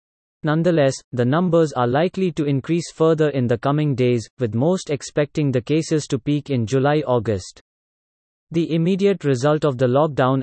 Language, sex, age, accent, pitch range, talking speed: English, male, 30-49, Indian, 130-155 Hz, 155 wpm